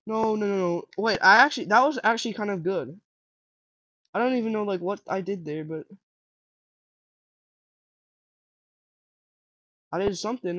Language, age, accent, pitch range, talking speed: English, 20-39, American, 160-200 Hz, 145 wpm